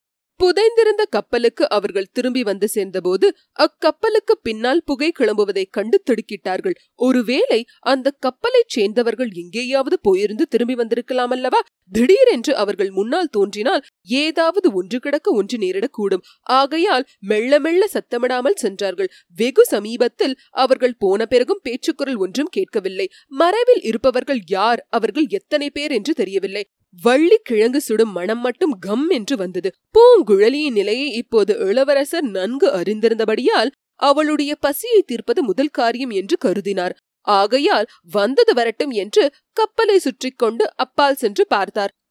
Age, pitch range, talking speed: 30-49, 230-380 Hz, 95 wpm